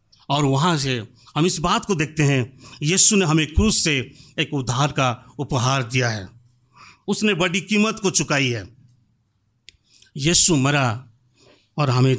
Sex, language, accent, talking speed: male, Hindi, native, 150 wpm